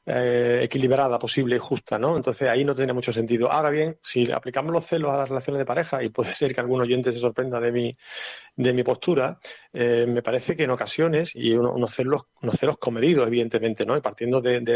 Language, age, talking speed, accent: Spanish, 40-59, 225 wpm, Spanish